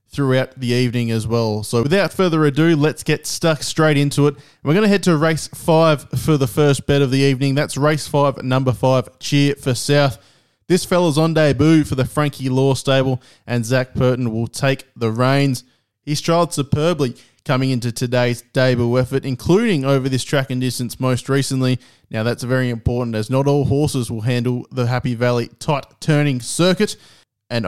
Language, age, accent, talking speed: English, 20-39, Australian, 185 wpm